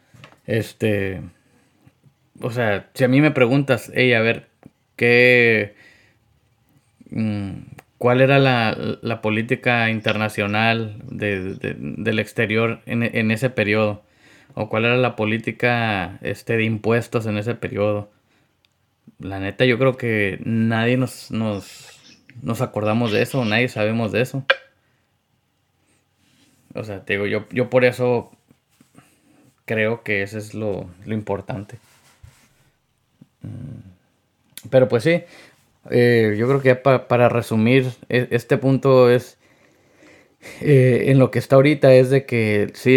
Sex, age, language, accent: male, 20-39, Spanish, Mexican